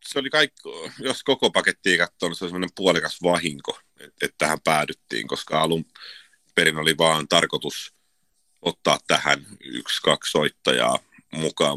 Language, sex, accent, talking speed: Finnish, male, native, 150 wpm